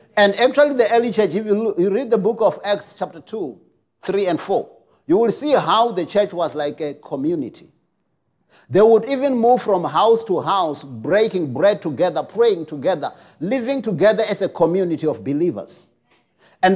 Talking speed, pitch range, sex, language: 175 wpm, 170-225 Hz, male, English